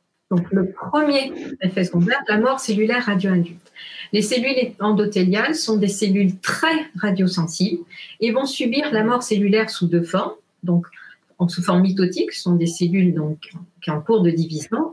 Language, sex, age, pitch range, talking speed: French, female, 50-69, 180-235 Hz, 170 wpm